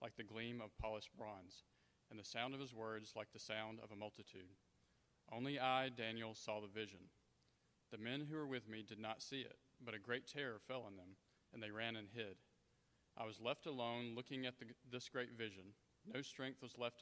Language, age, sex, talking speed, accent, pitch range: English, 40-59, male, 210 wpm, American, 110-125 Hz